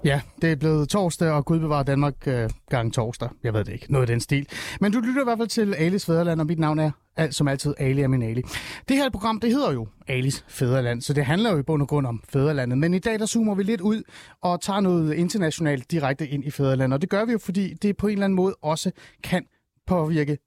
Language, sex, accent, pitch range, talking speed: Danish, male, native, 135-195 Hz, 260 wpm